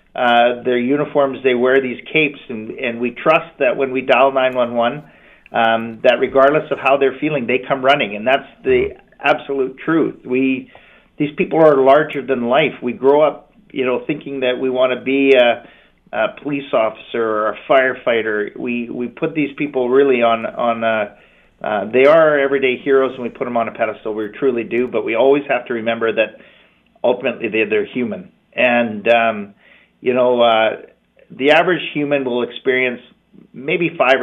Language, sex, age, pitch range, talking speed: English, male, 50-69, 115-140 Hz, 180 wpm